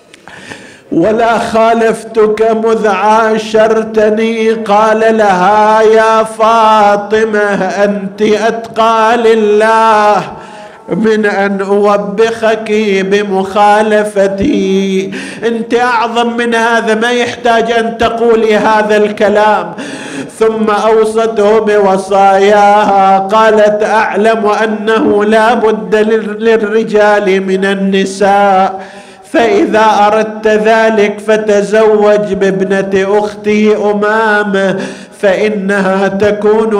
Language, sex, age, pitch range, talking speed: Arabic, male, 50-69, 205-220 Hz, 70 wpm